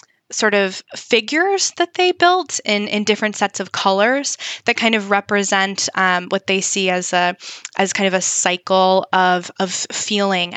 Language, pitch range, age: English, 185-220 Hz, 10-29